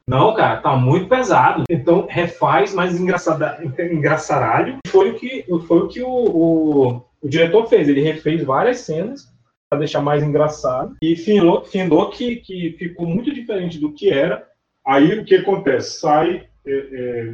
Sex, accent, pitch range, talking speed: male, Brazilian, 135-180 Hz, 165 wpm